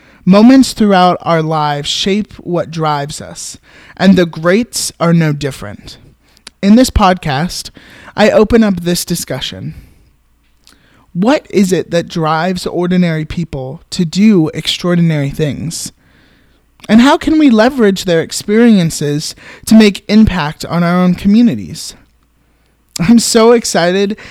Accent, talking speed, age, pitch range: American, 125 wpm, 20-39, 155-205 Hz